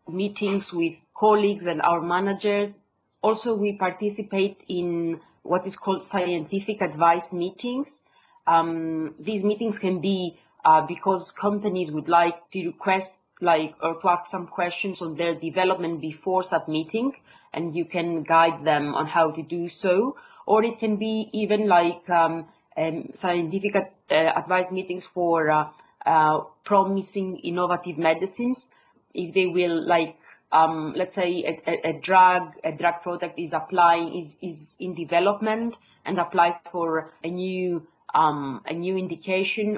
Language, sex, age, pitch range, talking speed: English, female, 30-49, 165-190 Hz, 145 wpm